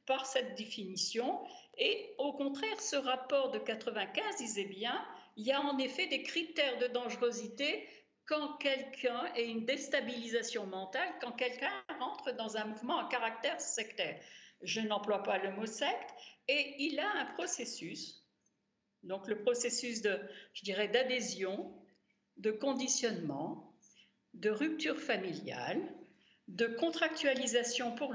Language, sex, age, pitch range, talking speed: French, female, 60-79, 225-285 Hz, 130 wpm